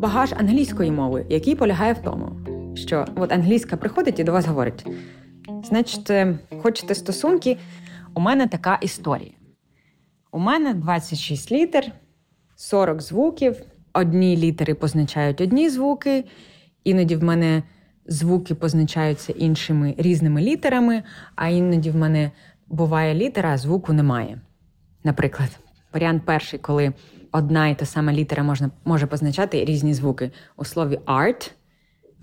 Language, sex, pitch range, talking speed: Ukrainian, female, 145-185 Hz, 125 wpm